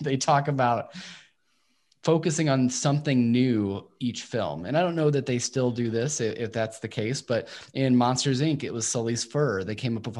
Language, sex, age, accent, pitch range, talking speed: English, male, 20-39, American, 115-140 Hz, 200 wpm